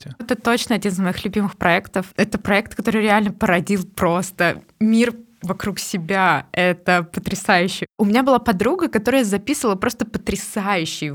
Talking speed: 140 wpm